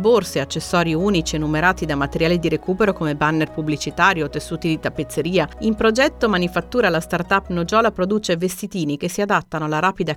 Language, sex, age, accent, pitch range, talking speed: Italian, female, 40-59, native, 155-205 Hz, 170 wpm